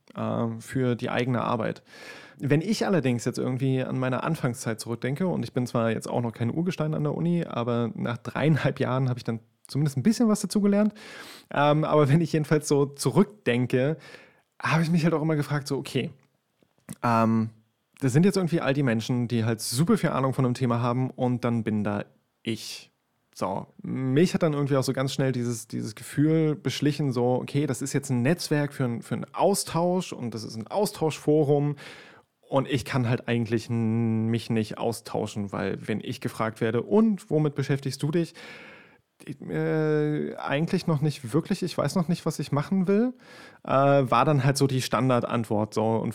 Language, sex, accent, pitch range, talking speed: German, male, German, 120-155 Hz, 185 wpm